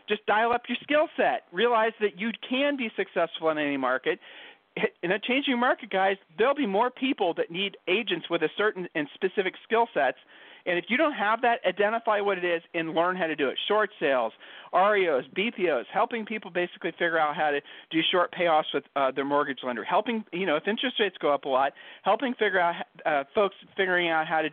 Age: 40-59